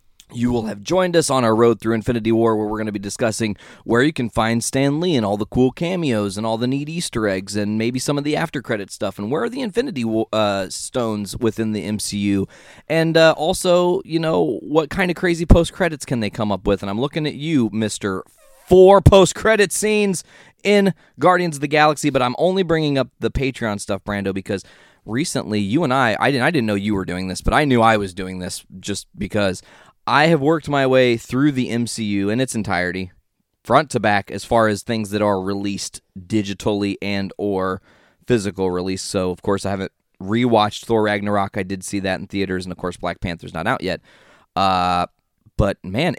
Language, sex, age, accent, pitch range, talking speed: English, male, 20-39, American, 100-140 Hz, 210 wpm